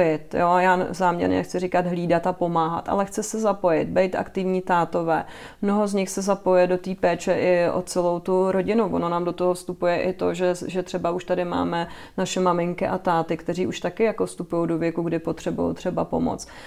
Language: Czech